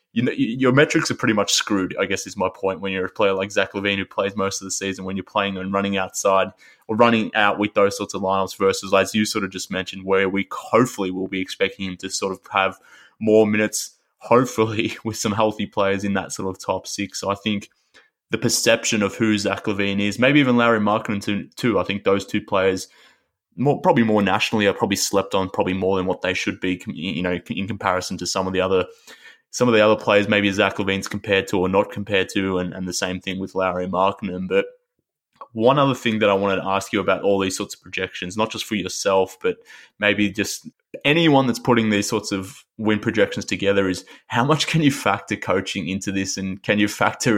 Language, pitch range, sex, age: English, 95-110 Hz, male, 20-39